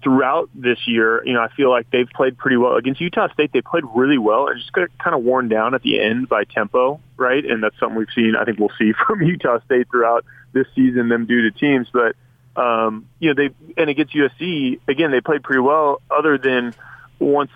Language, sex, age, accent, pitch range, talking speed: English, male, 20-39, American, 110-135 Hz, 230 wpm